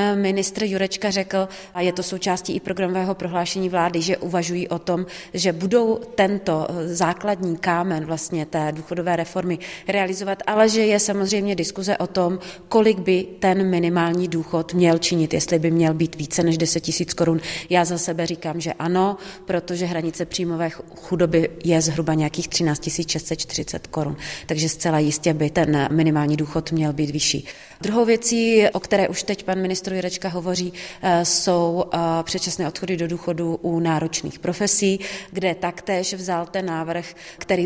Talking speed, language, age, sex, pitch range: 155 wpm, Czech, 30-49, female, 165-185 Hz